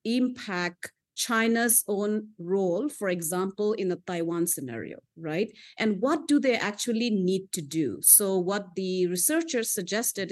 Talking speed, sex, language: 140 wpm, female, English